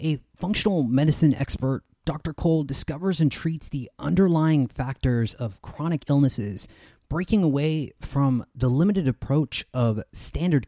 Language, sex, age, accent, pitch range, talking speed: English, male, 30-49, American, 130-165 Hz, 130 wpm